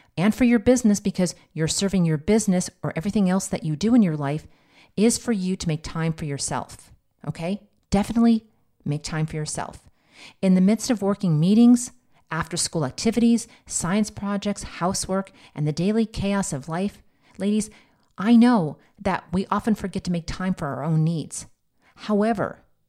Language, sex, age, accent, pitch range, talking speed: English, female, 40-59, American, 160-200 Hz, 170 wpm